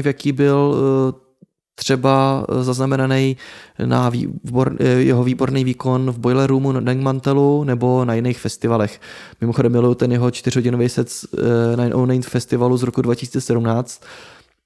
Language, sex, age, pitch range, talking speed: Czech, male, 20-39, 125-145 Hz, 120 wpm